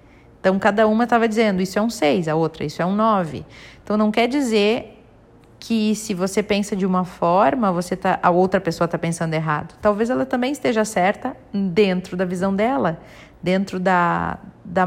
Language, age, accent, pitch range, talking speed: Portuguese, 40-59, Brazilian, 175-215 Hz, 185 wpm